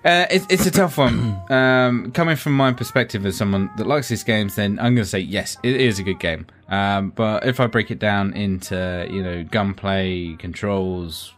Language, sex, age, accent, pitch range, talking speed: English, male, 20-39, British, 95-120 Hz, 210 wpm